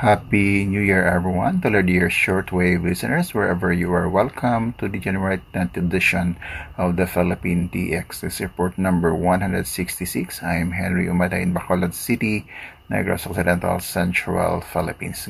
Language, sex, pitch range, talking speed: English, male, 90-100 Hz, 140 wpm